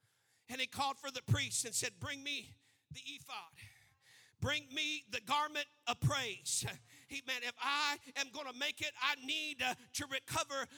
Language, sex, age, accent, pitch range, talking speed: English, male, 50-69, American, 265-335 Hz, 175 wpm